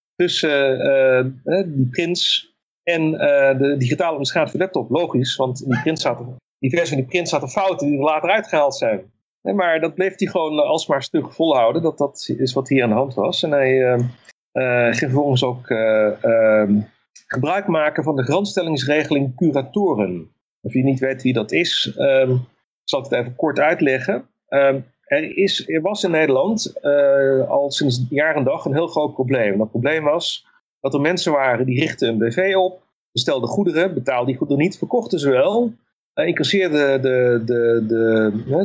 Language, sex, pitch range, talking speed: Dutch, male, 130-165 Hz, 180 wpm